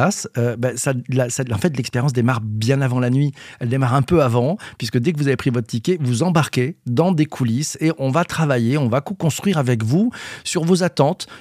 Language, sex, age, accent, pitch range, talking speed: French, male, 40-59, French, 115-160 Hz, 225 wpm